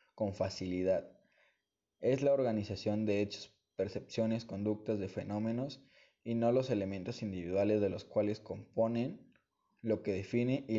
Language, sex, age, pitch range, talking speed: Spanish, male, 20-39, 100-115 Hz, 135 wpm